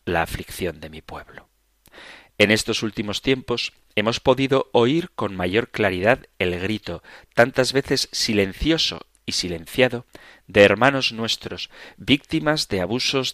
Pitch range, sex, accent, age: 95-135 Hz, male, Spanish, 40-59